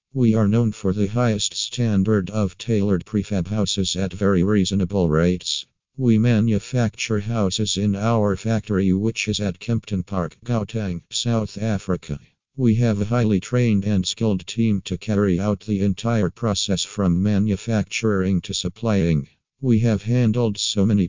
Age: 50-69